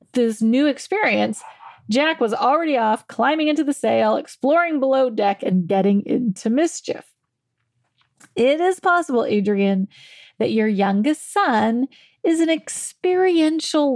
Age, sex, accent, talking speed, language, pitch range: 30-49, female, American, 125 wpm, English, 205-300 Hz